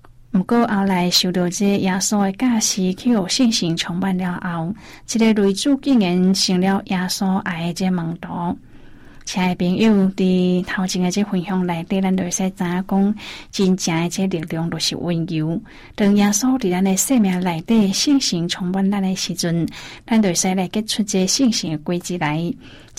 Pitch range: 180-215 Hz